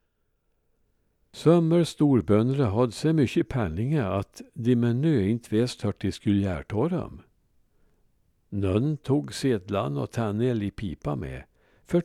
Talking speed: 130 wpm